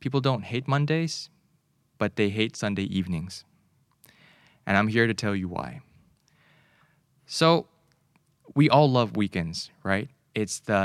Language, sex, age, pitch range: Thai, male, 20-39, 100-135 Hz